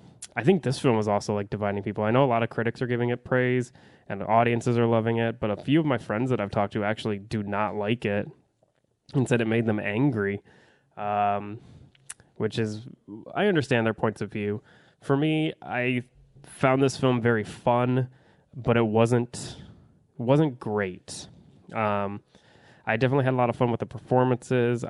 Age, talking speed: 20-39, 190 wpm